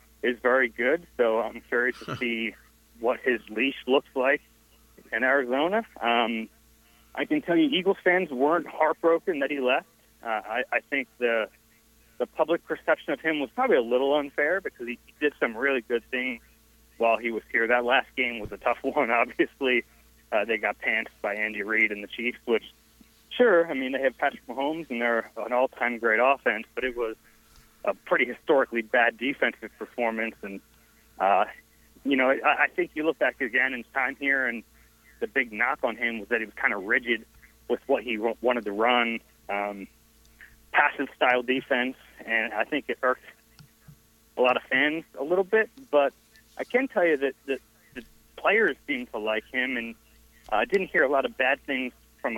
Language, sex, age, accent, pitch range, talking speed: English, male, 40-59, American, 115-145 Hz, 190 wpm